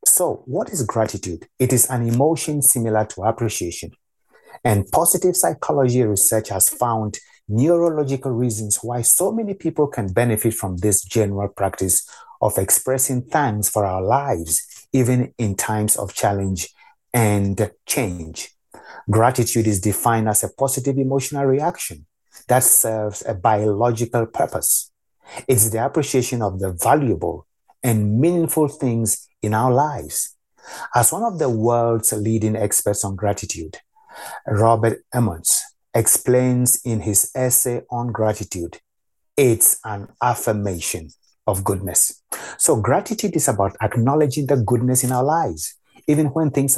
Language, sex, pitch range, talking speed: English, male, 105-130 Hz, 130 wpm